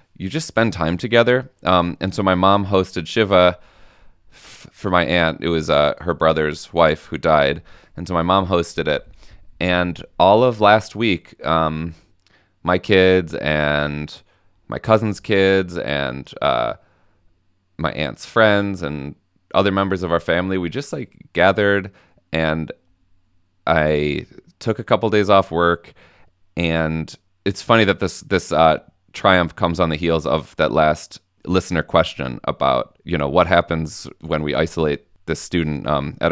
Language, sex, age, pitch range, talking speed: English, male, 30-49, 80-95 Hz, 155 wpm